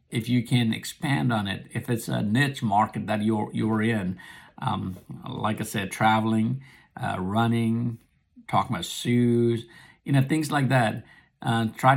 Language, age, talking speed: English, 50-69, 160 wpm